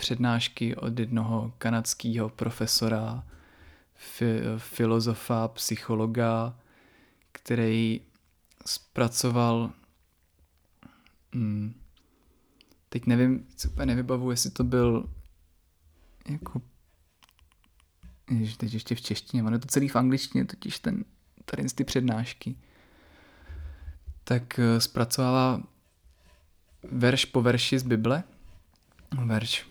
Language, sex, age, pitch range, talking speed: Czech, male, 20-39, 110-125 Hz, 85 wpm